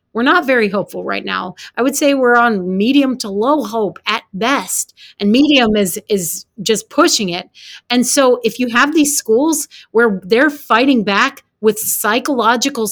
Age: 30-49